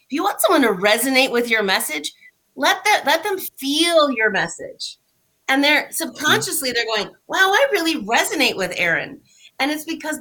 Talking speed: 170 wpm